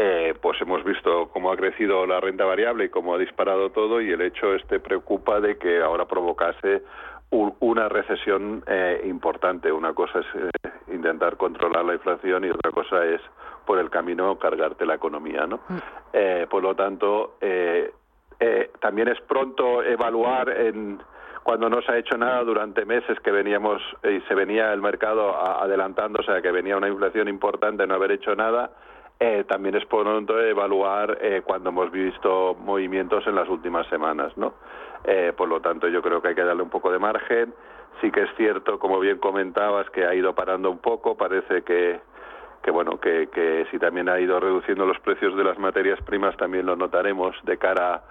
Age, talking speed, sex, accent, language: 50-69, 190 wpm, male, Spanish, Spanish